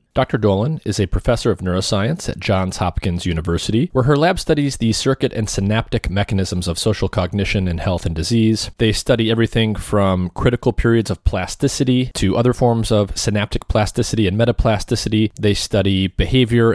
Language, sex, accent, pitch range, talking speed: English, male, American, 95-115 Hz, 165 wpm